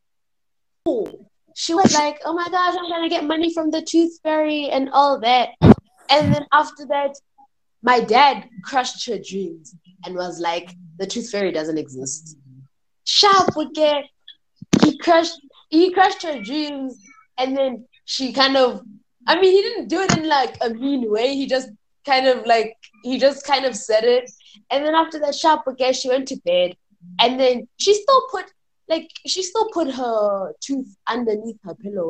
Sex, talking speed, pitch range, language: female, 180 wpm, 185-290 Hz, English